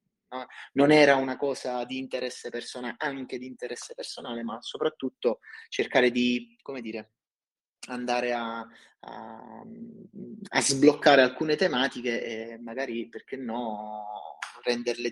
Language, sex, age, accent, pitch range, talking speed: Italian, male, 30-49, native, 115-145 Hz, 115 wpm